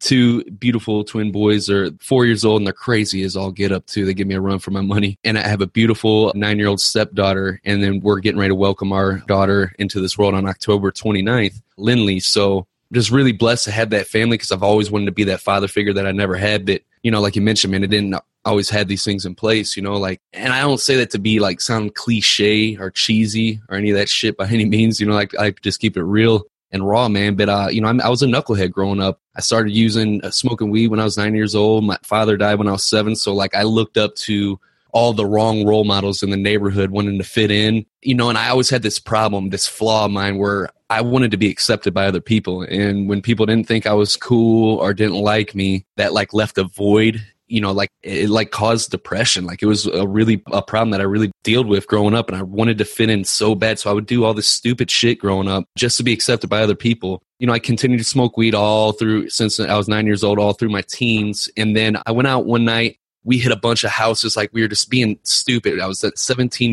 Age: 20-39